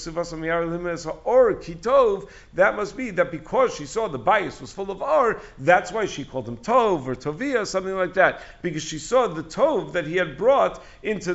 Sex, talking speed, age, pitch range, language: male, 190 wpm, 50-69, 135-175 Hz, English